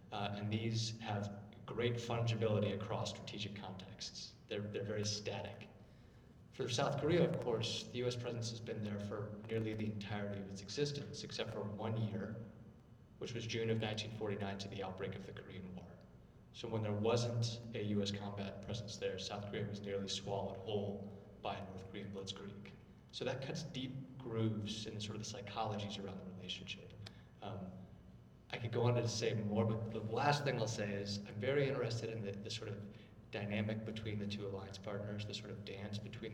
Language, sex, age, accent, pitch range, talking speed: English, male, 30-49, American, 100-110 Hz, 185 wpm